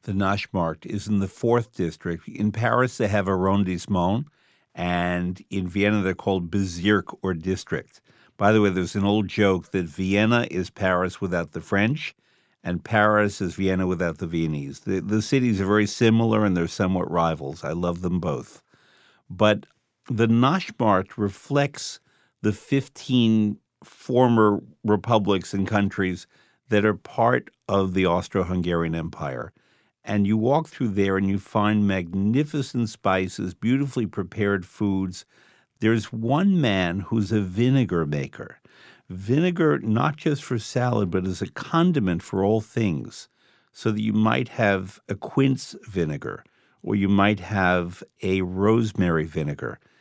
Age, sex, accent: 50-69, male, American